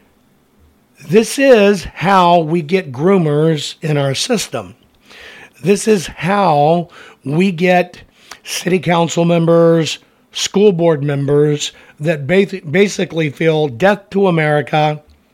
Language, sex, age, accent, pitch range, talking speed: English, male, 60-79, American, 150-190 Hz, 100 wpm